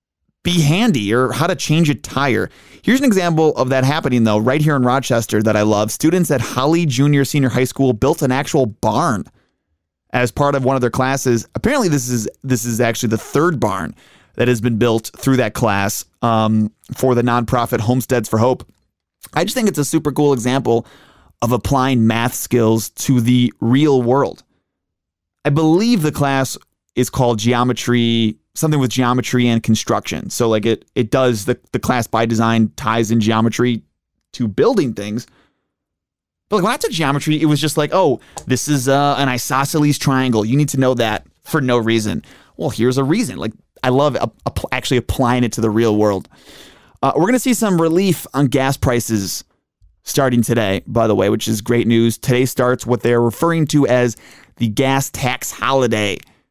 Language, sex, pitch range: English, male, 115-140 Hz